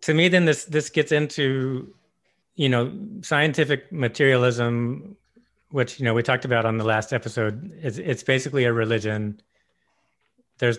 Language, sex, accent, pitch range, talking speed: English, male, American, 115-135 Hz, 150 wpm